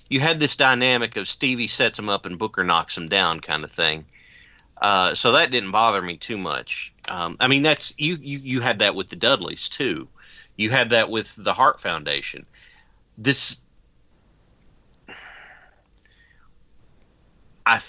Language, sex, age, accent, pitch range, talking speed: English, male, 40-59, American, 90-130 Hz, 155 wpm